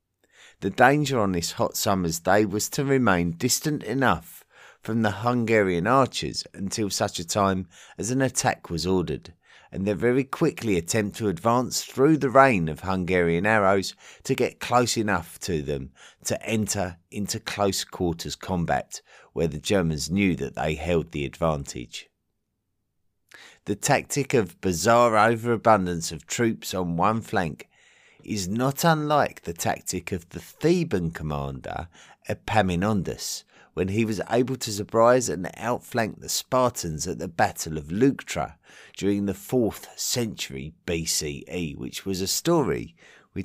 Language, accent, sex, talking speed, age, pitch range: English, British, male, 145 wpm, 30-49, 85-115 Hz